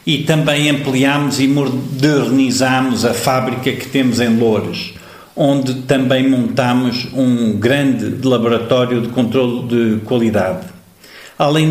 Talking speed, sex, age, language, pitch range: 115 wpm, male, 50-69, Portuguese, 120-145 Hz